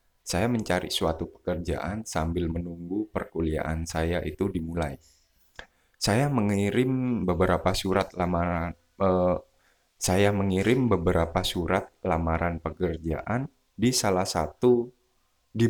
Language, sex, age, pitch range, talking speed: Indonesian, male, 20-39, 80-100 Hz, 100 wpm